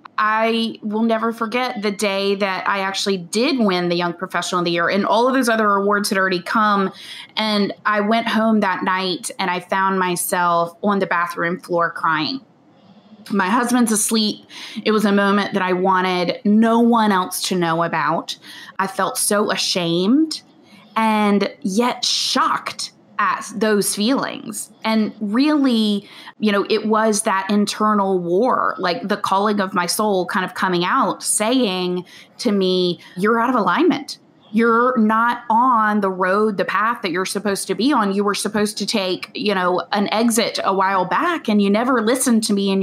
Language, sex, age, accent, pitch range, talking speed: English, female, 20-39, American, 185-225 Hz, 175 wpm